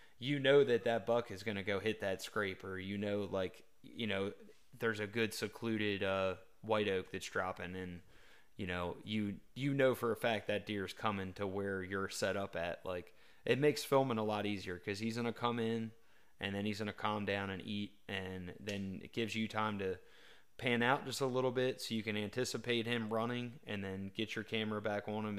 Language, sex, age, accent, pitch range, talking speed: English, male, 20-39, American, 95-115 Hz, 215 wpm